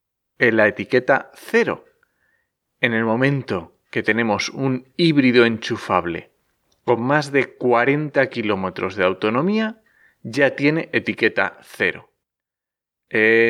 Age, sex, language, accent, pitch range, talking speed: 30-49, male, Spanish, Spanish, 115-170 Hz, 105 wpm